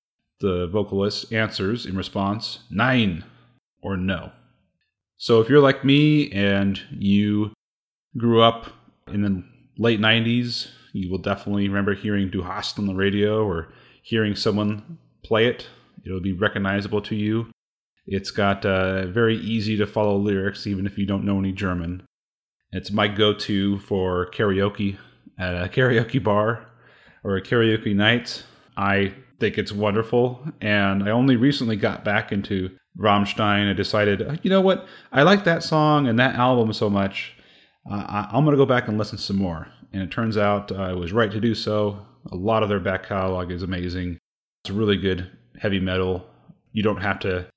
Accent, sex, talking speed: American, male, 170 wpm